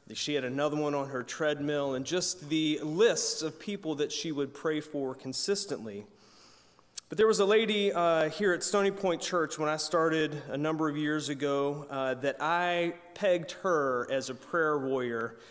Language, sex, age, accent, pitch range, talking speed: English, male, 30-49, American, 140-175 Hz, 180 wpm